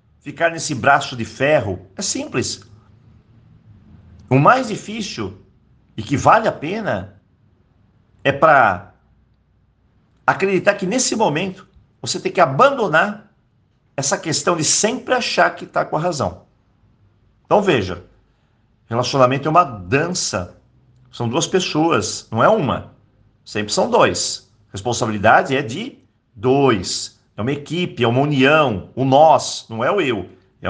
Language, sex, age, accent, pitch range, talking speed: Portuguese, male, 50-69, Brazilian, 110-155 Hz, 130 wpm